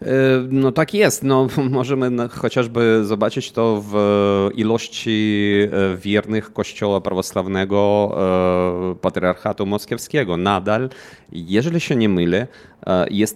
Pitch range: 95-115 Hz